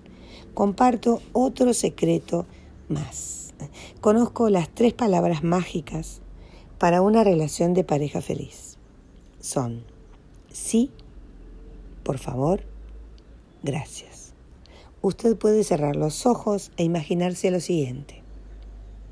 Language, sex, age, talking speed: Spanish, female, 50-69, 90 wpm